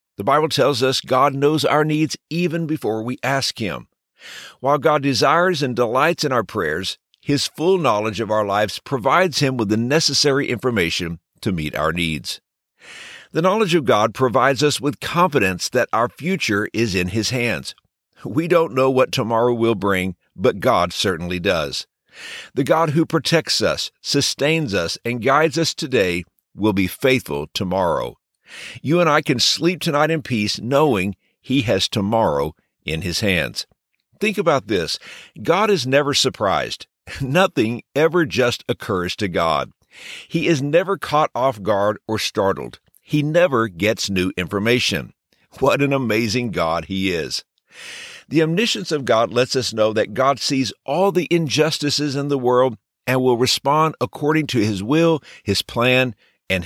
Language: English